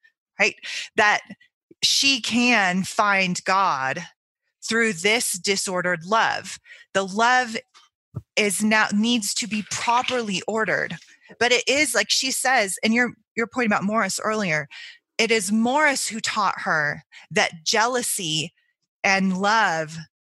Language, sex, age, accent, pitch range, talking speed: English, female, 20-39, American, 195-255 Hz, 125 wpm